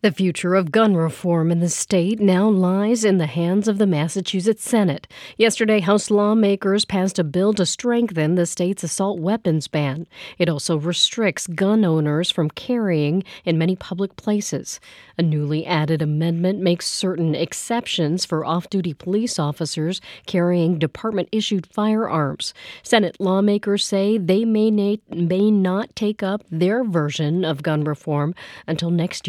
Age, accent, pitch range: 40-59, American, 165-205 Hz